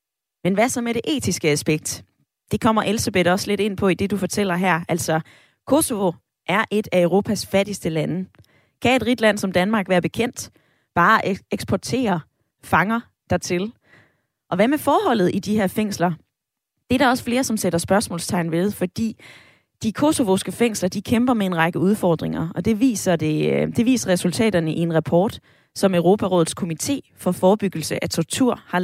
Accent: native